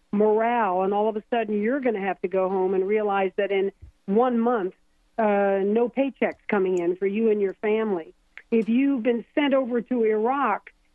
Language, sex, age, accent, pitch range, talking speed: English, female, 50-69, American, 205-245 Hz, 195 wpm